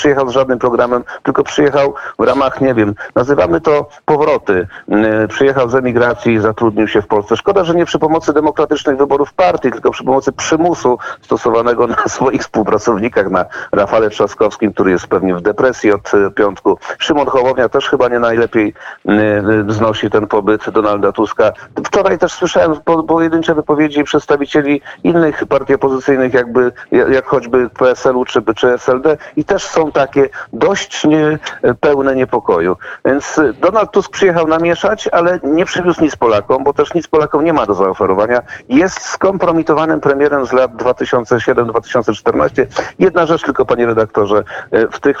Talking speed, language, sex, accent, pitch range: 145 wpm, Polish, male, native, 125-160 Hz